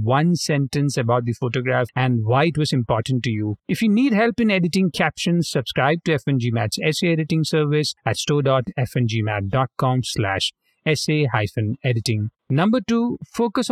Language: English